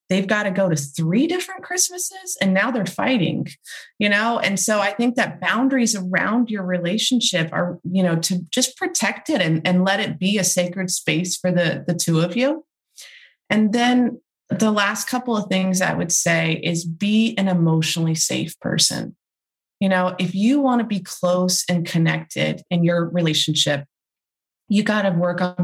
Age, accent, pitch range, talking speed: 20-39, American, 170-210 Hz, 185 wpm